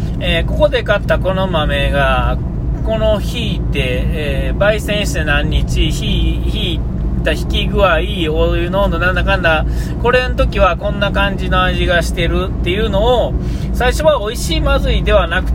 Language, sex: Japanese, male